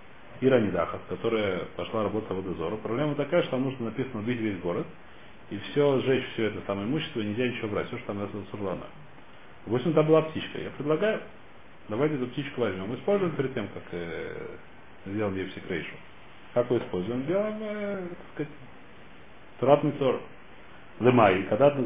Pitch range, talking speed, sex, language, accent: 100-145 Hz, 155 wpm, male, Russian, native